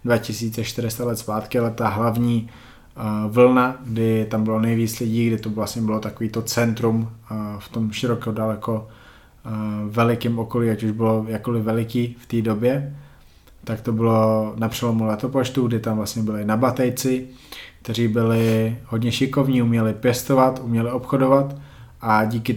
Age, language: 20-39, Slovak